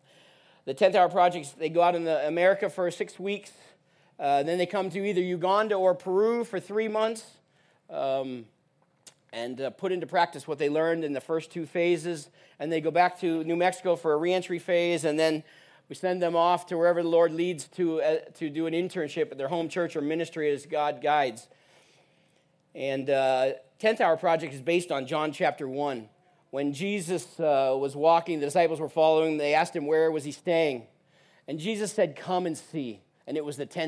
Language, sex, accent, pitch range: English, male, American, 150-180 Hz